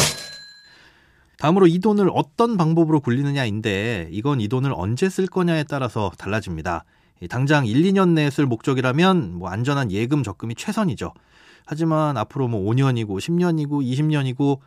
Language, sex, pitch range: Korean, male, 110-165 Hz